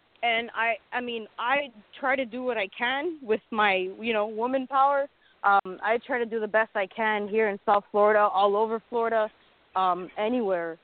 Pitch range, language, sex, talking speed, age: 200-235 Hz, English, female, 195 wpm, 20-39